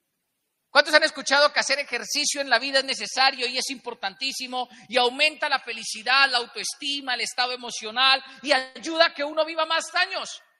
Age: 40-59